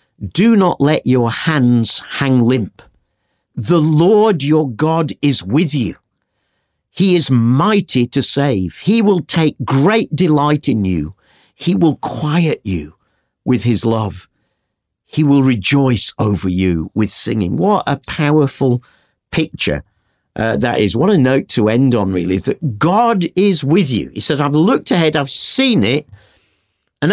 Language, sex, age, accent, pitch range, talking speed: English, male, 50-69, British, 110-155 Hz, 150 wpm